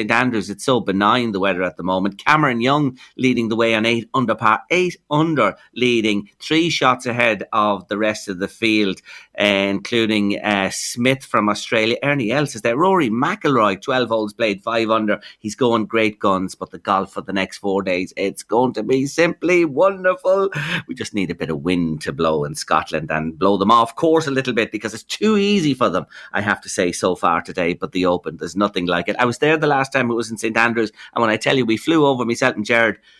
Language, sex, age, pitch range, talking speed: English, male, 30-49, 100-135 Hz, 230 wpm